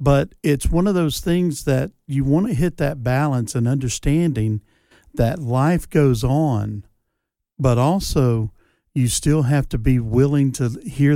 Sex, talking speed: male, 155 wpm